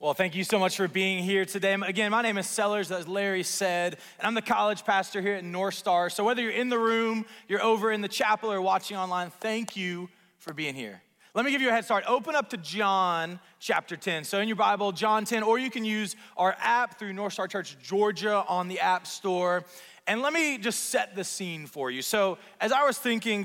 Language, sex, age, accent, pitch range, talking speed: English, male, 30-49, American, 185-230 Hz, 240 wpm